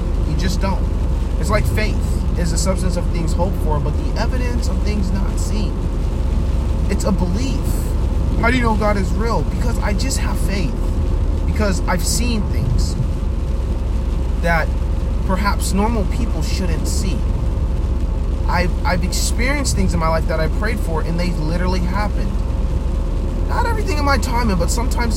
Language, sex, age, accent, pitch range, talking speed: English, male, 30-49, American, 70-85 Hz, 155 wpm